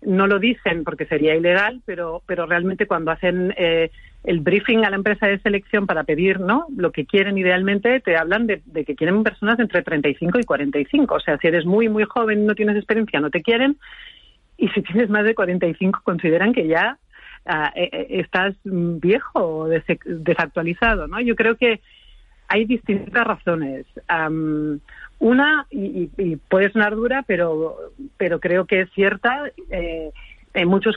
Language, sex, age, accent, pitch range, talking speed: Spanish, female, 50-69, Spanish, 160-205 Hz, 170 wpm